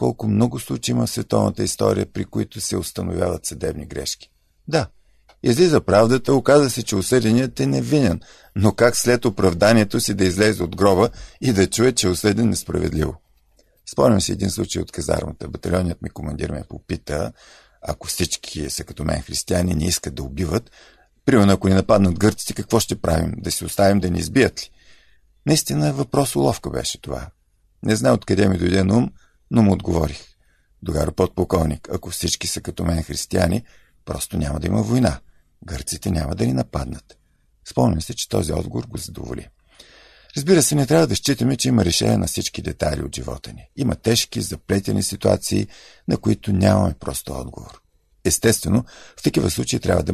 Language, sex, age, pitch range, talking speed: Bulgarian, male, 50-69, 85-110 Hz, 170 wpm